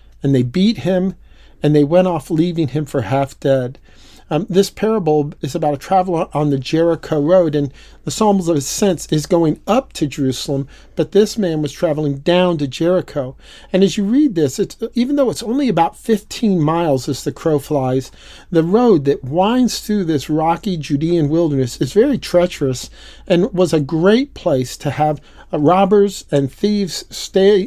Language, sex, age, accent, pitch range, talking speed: English, male, 50-69, American, 150-195 Hz, 180 wpm